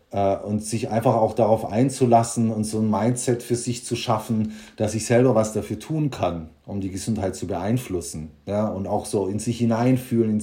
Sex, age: male, 30-49